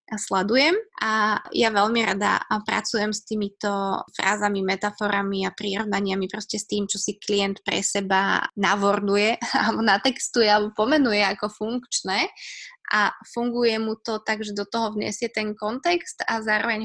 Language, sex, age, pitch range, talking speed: Slovak, female, 20-39, 205-250 Hz, 140 wpm